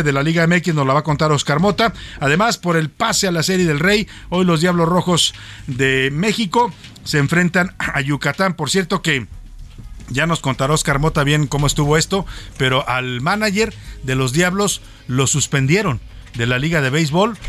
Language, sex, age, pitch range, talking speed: Spanish, male, 50-69, 125-170 Hz, 190 wpm